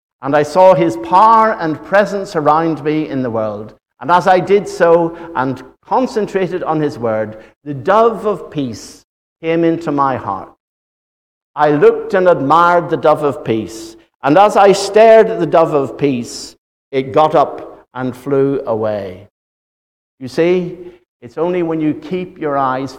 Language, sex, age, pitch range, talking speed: English, male, 60-79, 125-195 Hz, 160 wpm